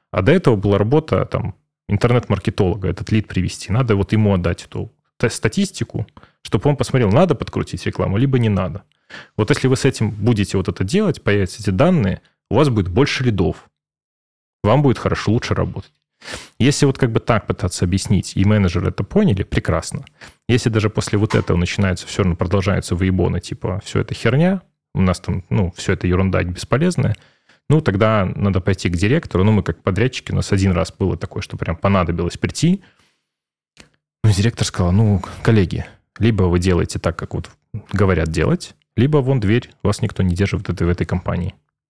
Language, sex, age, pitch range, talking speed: Russian, male, 30-49, 95-115 Hz, 180 wpm